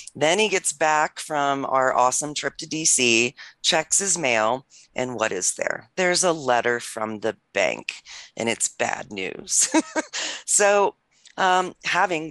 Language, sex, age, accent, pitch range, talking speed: English, female, 30-49, American, 120-160 Hz, 145 wpm